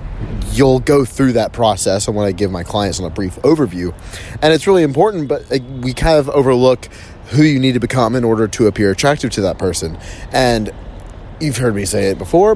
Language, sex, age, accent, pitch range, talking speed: English, male, 30-49, American, 100-130 Hz, 210 wpm